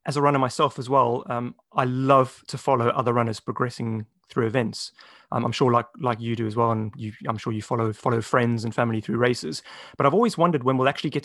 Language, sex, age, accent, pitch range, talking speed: English, male, 30-49, British, 115-140 Hz, 240 wpm